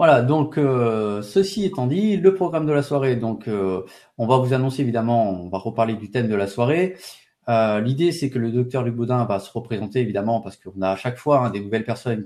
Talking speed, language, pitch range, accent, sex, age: 235 wpm, French, 105-135 Hz, French, male, 30-49